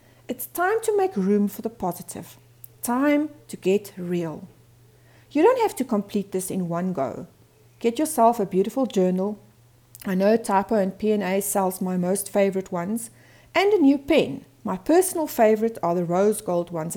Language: English